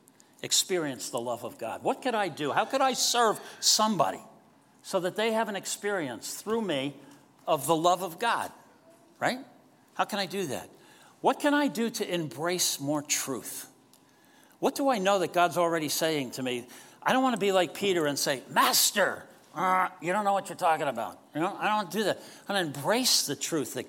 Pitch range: 170-250 Hz